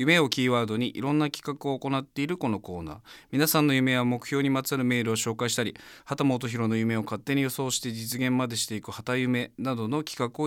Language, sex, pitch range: Japanese, male, 105-140 Hz